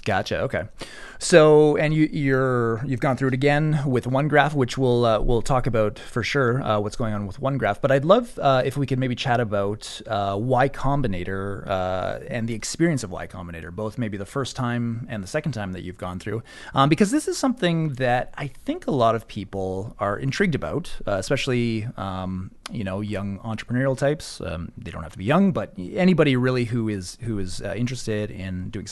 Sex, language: male, English